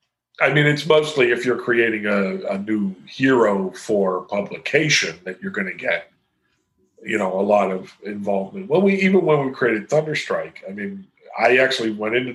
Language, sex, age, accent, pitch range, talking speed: English, male, 40-59, American, 100-145 Hz, 180 wpm